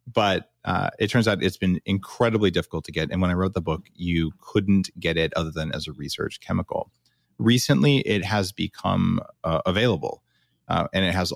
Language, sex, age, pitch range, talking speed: English, male, 30-49, 85-110 Hz, 195 wpm